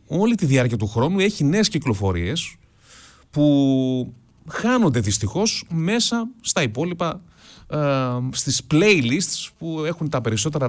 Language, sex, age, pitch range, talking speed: Greek, male, 30-49, 110-160 Hz, 120 wpm